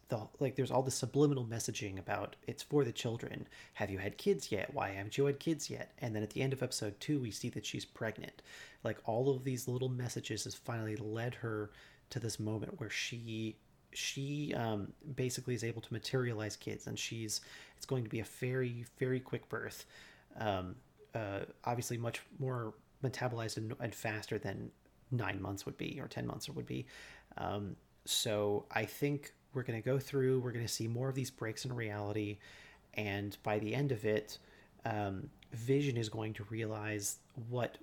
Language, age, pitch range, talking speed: English, 40-59, 105-130 Hz, 190 wpm